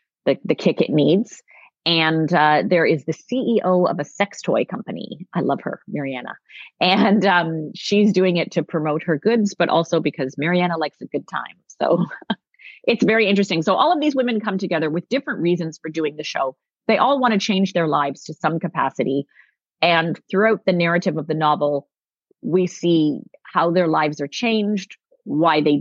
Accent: American